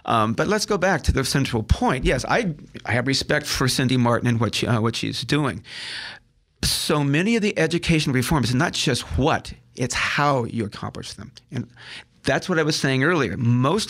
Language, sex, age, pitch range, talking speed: English, male, 50-69, 120-155 Hz, 200 wpm